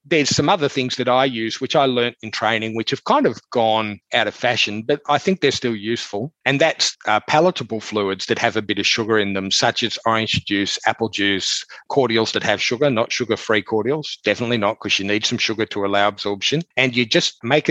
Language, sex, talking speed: English, male, 225 wpm